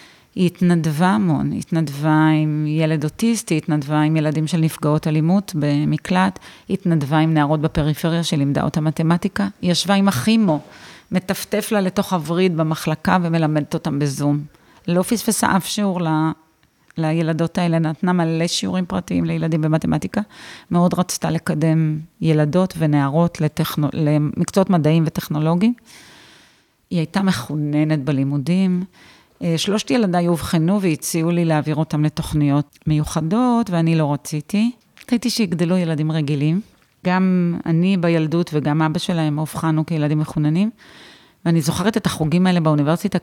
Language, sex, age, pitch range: Hebrew, female, 30-49, 155-195 Hz